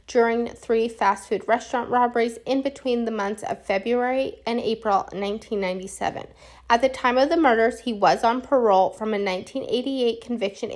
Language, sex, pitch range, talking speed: English, female, 200-250 Hz, 155 wpm